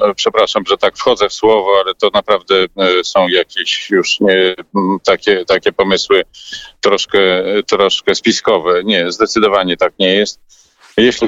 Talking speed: 130 wpm